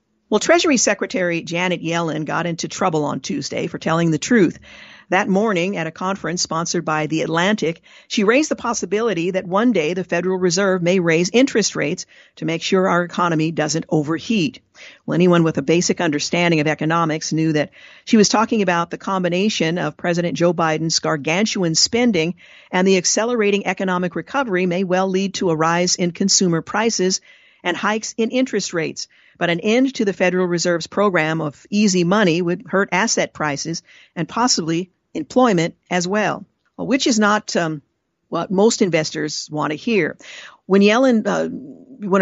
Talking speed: 170 wpm